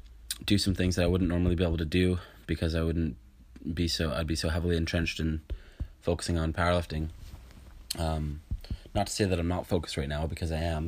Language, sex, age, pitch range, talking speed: English, male, 20-39, 80-90 Hz, 210 wpm